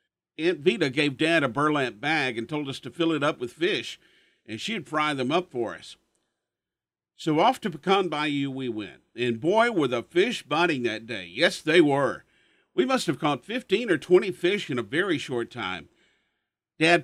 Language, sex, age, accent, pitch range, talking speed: English, male, 50-69, American, 130-175 Hz, 195 wpm